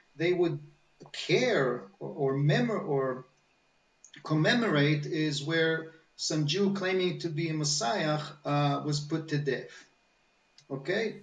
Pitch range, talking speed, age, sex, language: 150-185 Hz, 125 wpm, 50-69, male, English